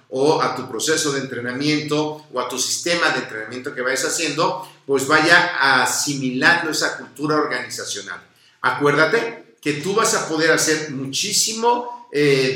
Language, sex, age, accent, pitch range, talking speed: Spanish, male, 50-69, Mexican, 135-180 Hz, 145 wpm